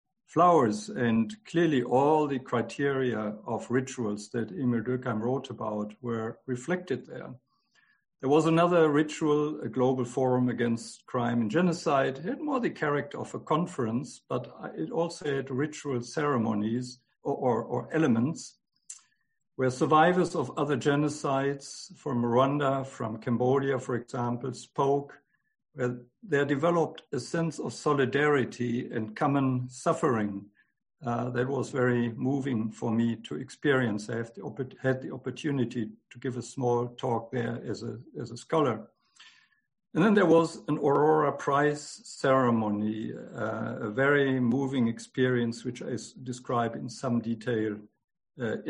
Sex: male